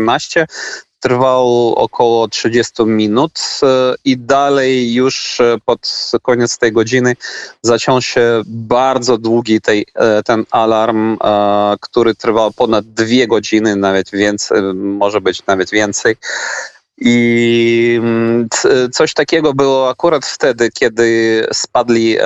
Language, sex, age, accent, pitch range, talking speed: Polish, male, 30-49, native, 105-120 Hz, 95 wpm